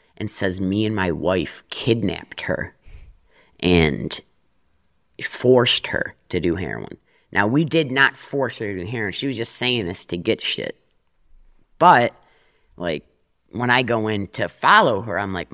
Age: 30-49